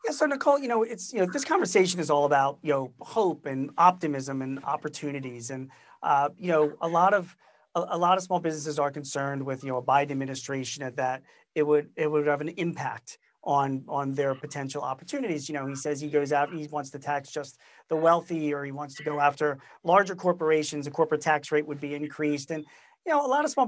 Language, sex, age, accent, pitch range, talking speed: English, male, 40-59, American, 145-185 Hz, 230 wpm